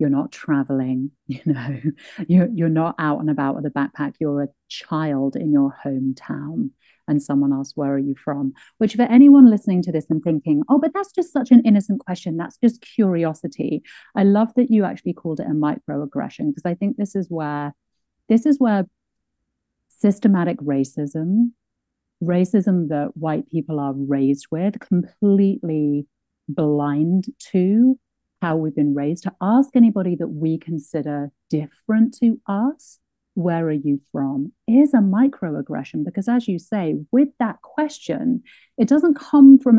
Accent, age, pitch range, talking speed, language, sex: British, 40-59, 145-215 Hz, 160 wpm, English, female